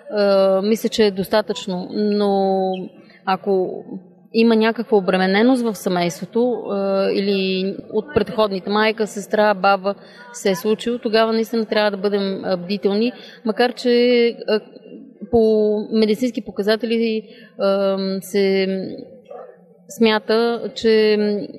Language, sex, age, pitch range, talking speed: Bulgarian, female, 30-49, 205-230 Hz, 95 wpm